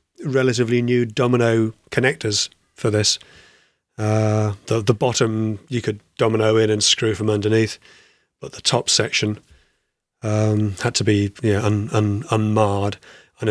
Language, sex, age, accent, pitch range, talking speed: English, male, 30-49, British, 110-125 Hz, 145 wpm